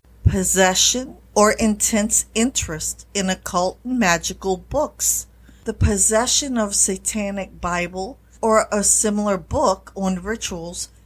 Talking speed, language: 110 wpm, English